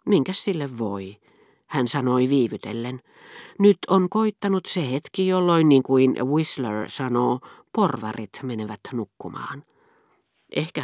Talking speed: 110 wpm